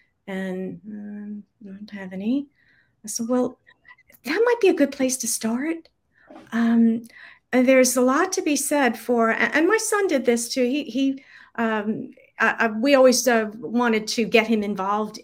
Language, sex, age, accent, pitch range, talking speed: English, female, 50-69, American, 195-245 Hz, 175 wpm